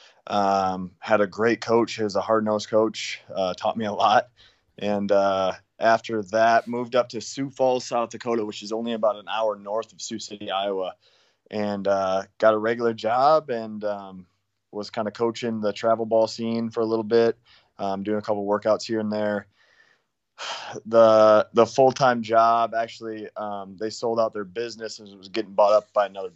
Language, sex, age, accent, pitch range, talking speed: English, male, 20-39, American, 100-115 Hz, 190 wpm